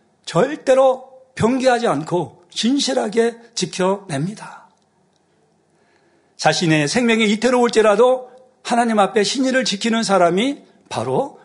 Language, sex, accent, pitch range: Korean, male, native, 170-230 Hz